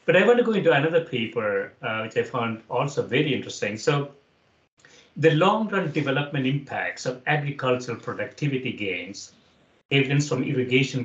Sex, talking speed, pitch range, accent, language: male, 150 wpm, 115-150 Hz, Indian, English